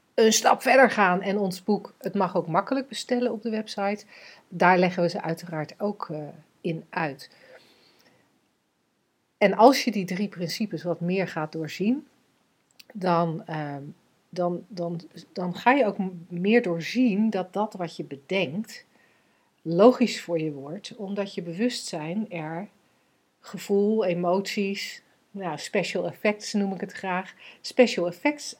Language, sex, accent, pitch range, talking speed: Dutch, female, Dutch, 175-230 Hz, 135 wpm